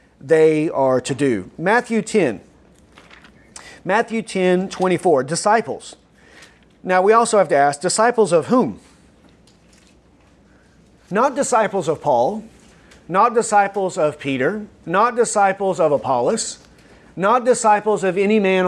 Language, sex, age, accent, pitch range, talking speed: English, male, 40-59, American, 150-200 Hz, 115 wpm